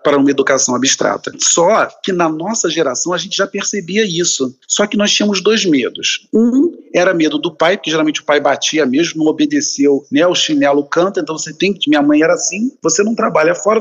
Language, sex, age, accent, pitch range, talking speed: Portuguese, male, 40-59, Brazilian, 150-225 Hz, 215 wpm